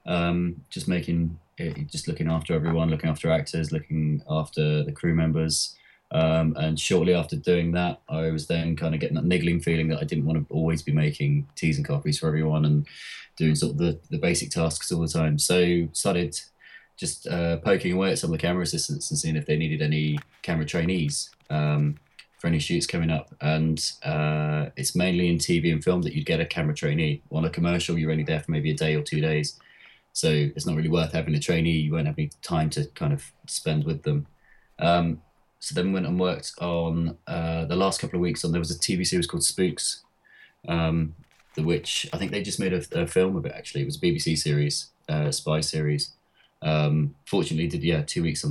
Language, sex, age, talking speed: English, male, 20-39, 220 wpm